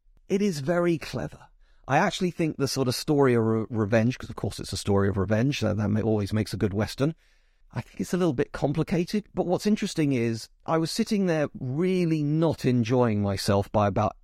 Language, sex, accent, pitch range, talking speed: English, male, British, 105-135 Hz, 200 wpm